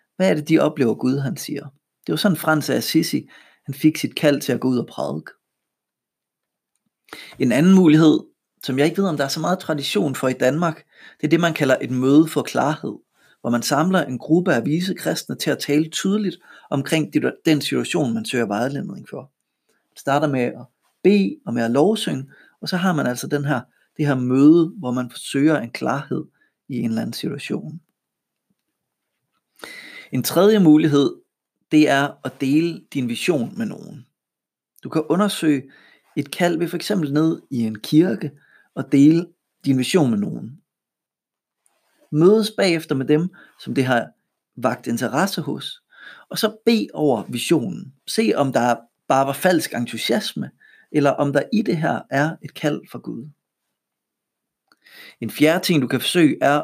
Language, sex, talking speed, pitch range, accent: Danish, male, 175 wpm, 135-175 Hz, native